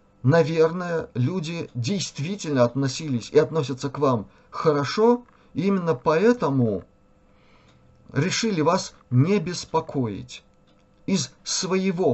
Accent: native